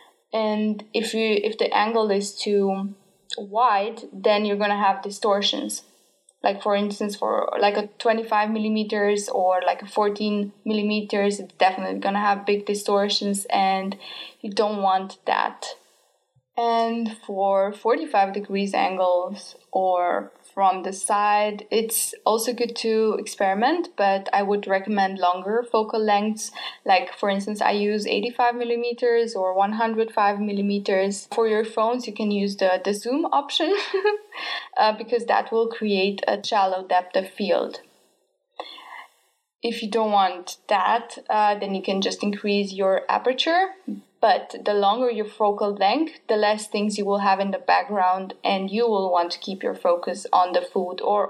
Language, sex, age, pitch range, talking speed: English, female, 10-29, 195-225 Hz, 155 wpm